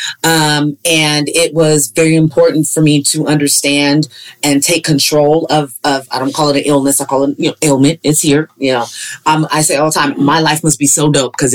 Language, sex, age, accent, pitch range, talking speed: English, female, 30-49, American, 145-170 Hz, 230 wpm